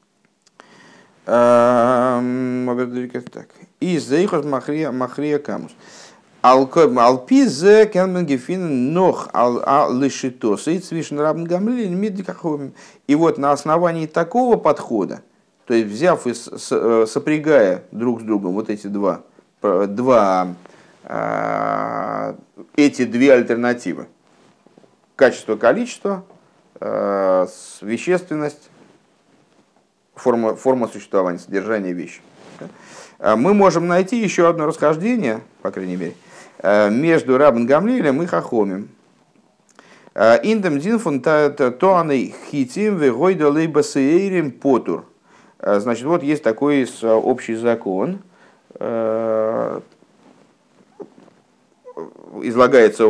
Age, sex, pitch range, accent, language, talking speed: 50-69, male, 115-180 Hz, native, Russian, 65 wpm